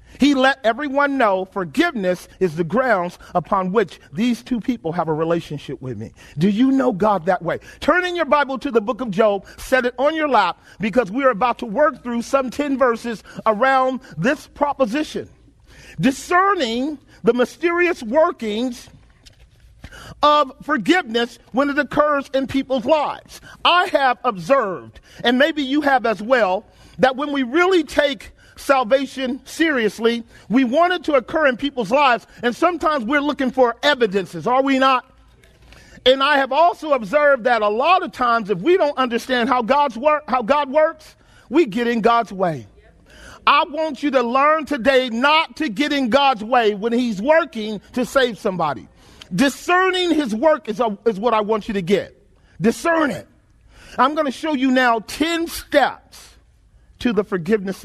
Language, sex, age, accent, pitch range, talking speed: English, male, 40-59, American, 225-290 Hz, 170 wpm